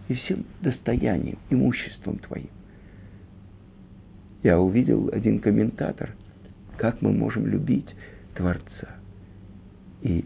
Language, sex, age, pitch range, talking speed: Russian, male, 50-69, 95-115 Hz, 90 wpm